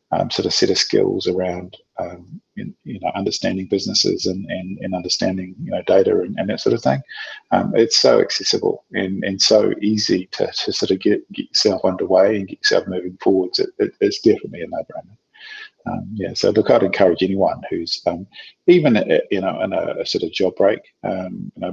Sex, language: male, English